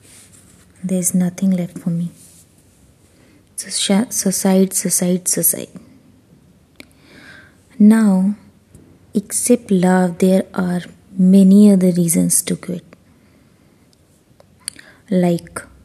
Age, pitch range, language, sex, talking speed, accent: 20-39, 170-195 Hz, Hindi, female, 80 wpm, native